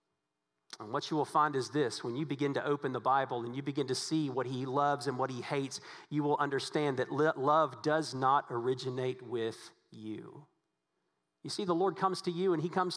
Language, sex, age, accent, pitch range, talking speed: English, male, 40-59, American, 140-180 Hz, 210 wpm